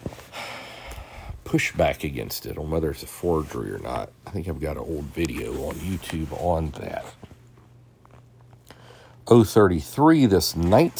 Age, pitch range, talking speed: 50-69, 80-115 Hz, 130 wpm